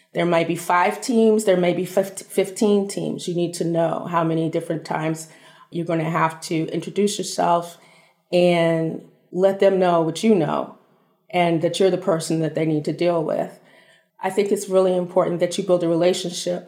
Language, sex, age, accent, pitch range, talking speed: English, female, 30-49, American, 165-185 Hz, 190 wpm